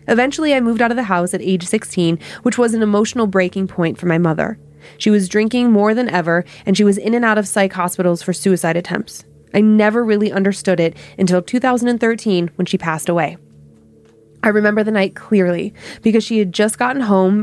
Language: English